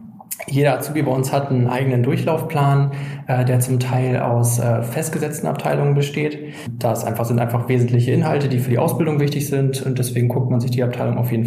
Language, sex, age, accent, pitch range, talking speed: German, male, 20-39, German, 125-150 Hz, 190 wpm